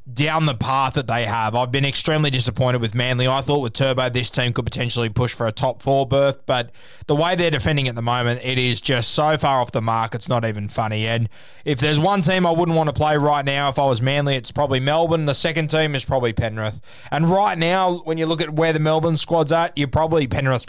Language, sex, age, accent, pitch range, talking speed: English, male, 20-39, Australian, 120-150 Hz, 250 wpm